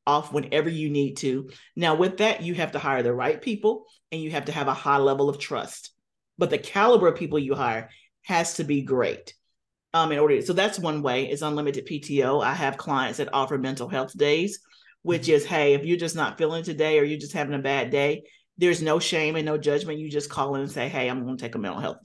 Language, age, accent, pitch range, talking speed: English, 40-59, American, 140-165 Hz, 245 wpm